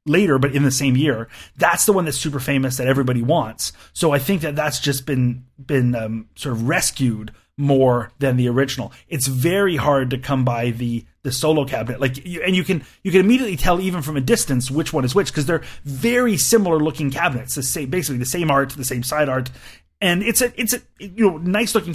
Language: English